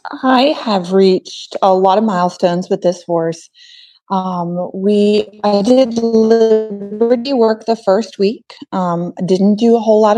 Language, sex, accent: English, female, American